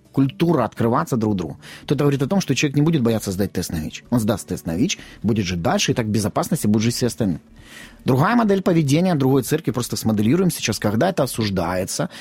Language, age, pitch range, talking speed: Ukrainian, 30-49, 110-155 Hz, 220 wpm